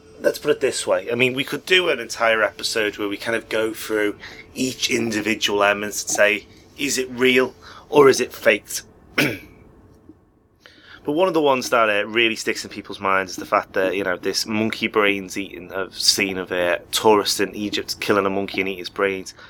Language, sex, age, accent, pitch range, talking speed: English, male, 30-49, British, 100-115 Hz, 205 wpm